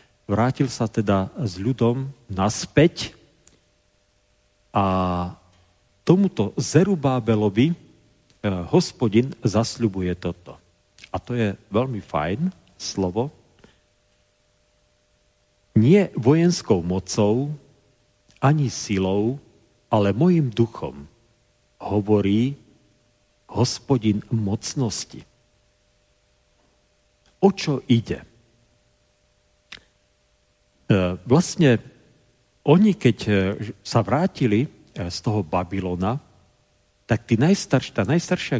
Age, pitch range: 40-59, 100-130 Hz